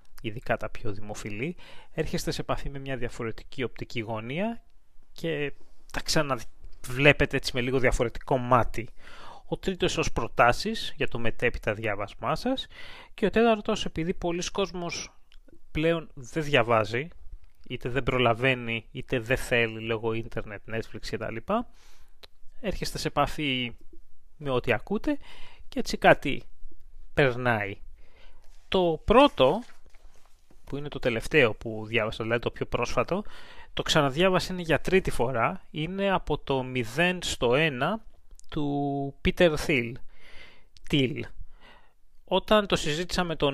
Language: Greek